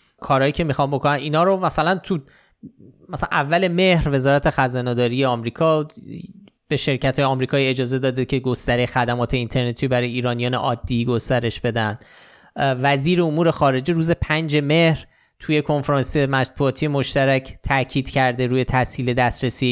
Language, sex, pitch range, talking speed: Persian, male, 125-150 Hz, 135 wpm